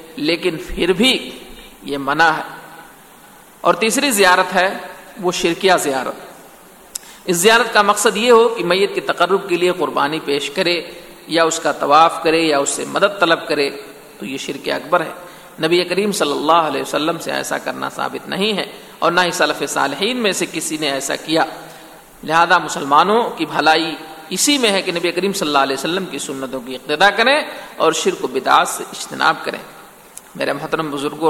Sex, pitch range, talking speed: male, 160-200 Hz, 185 wpm